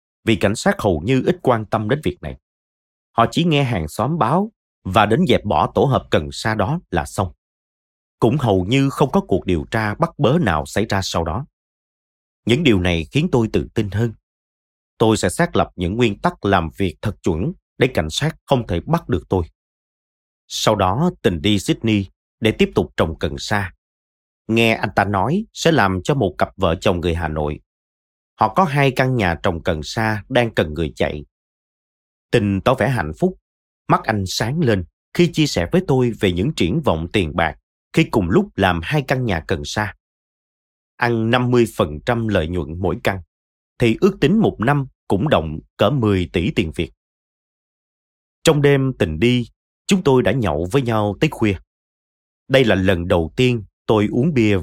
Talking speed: 190 wpm